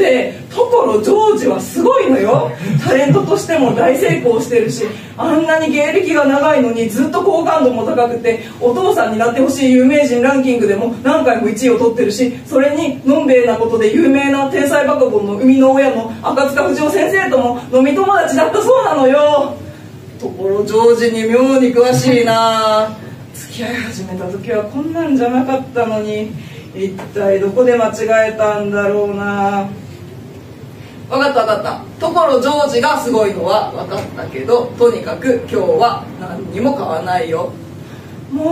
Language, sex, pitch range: Japanese, female, 205-285 Hz